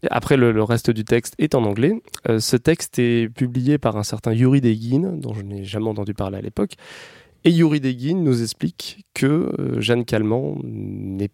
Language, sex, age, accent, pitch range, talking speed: French, male, 20-39, French, 110-145 Hz, 195 wpm